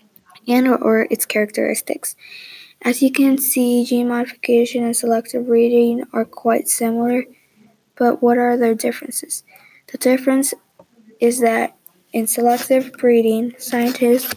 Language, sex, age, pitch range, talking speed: English, female, 20-39, 220-245 Hz, 120 wpm